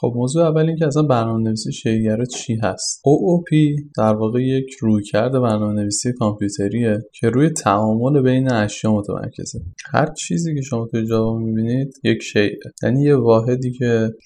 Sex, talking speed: male, 155 wpm